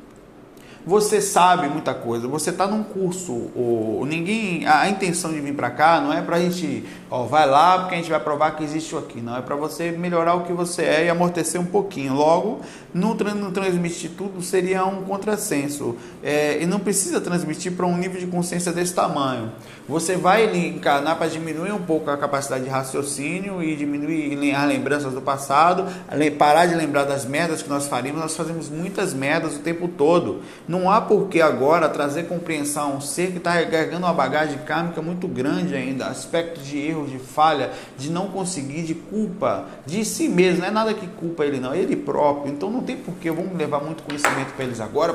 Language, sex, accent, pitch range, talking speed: Portuguese, male, Brazilian, 145-180 Hz, 205 wpm